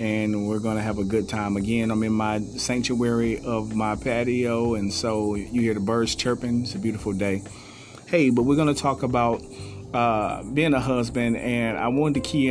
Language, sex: English, male